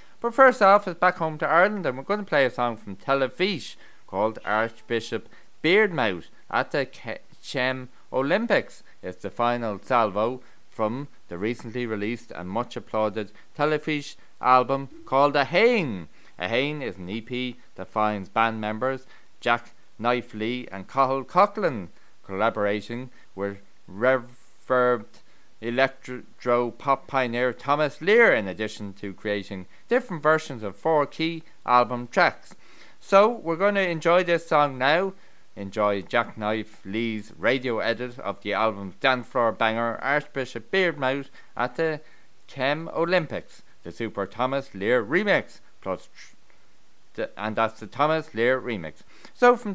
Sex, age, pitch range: male, 30-49, 110-145 Hz